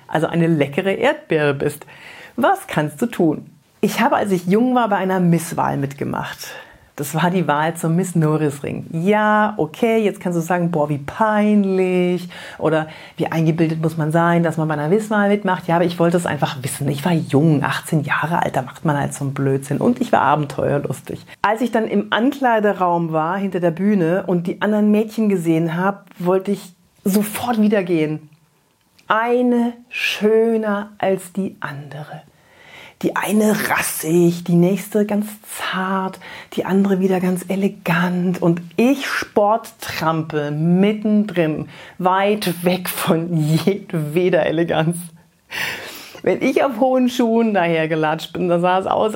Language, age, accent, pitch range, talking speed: German, 40-59, German, 160-205 Hz, 155 wpm